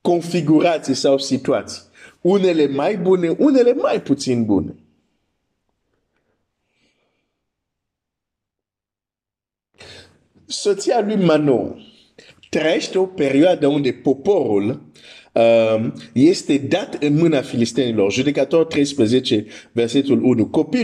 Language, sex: Romanian, male